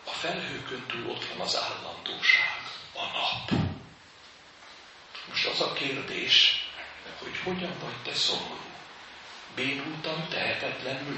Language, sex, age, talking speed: Hungarian, male, 60-79, 105 wpm